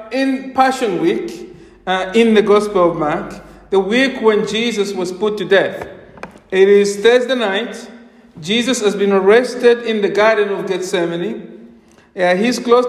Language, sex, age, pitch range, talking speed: English, male, 50-69, 190-250 Hz, 155 wpm